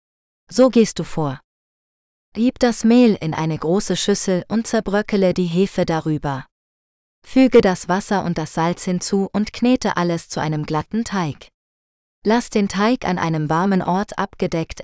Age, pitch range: 20-39, 160-200 Hz